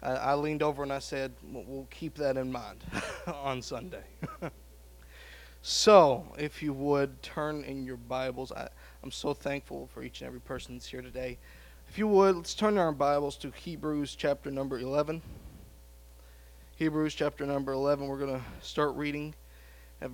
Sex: male